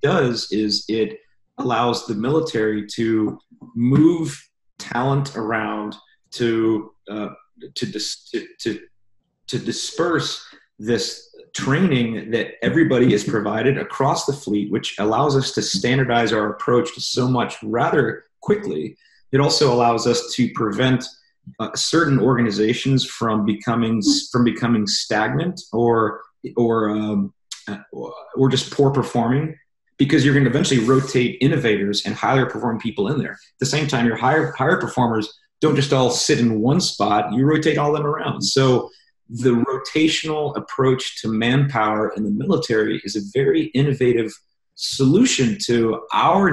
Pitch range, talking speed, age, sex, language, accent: 110-145 Hz, 140 wpm, 30-49, male, English, American